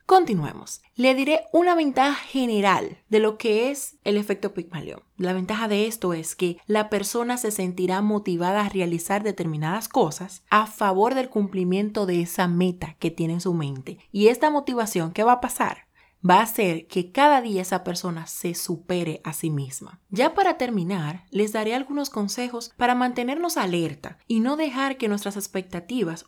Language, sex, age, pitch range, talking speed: Spanish, female, 30-49, 175-225 Hz, 175 wpm